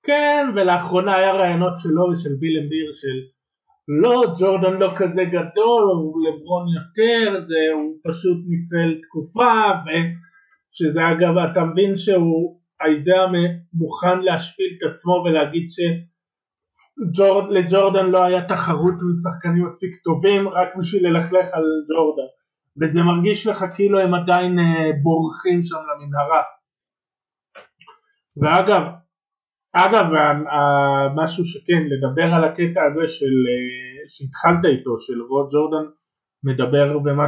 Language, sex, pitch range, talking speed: Hebrew, male, 150-190 Hz, 115 wpm